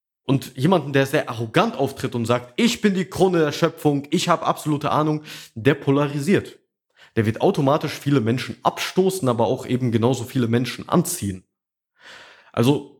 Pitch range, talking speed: 115-160 Hz, 155 wpm